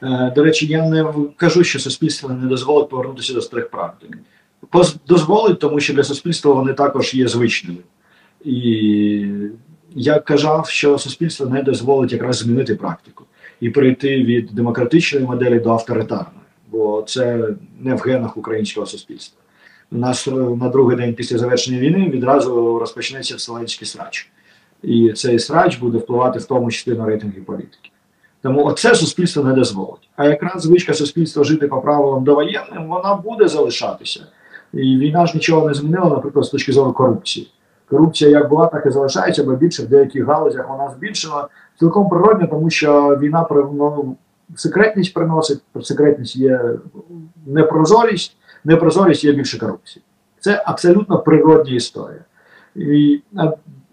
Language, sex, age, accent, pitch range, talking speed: Ukrainian, male, 40-59, native, 125-165 Hz, 145 wpm